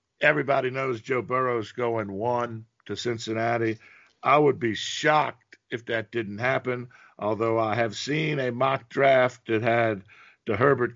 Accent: American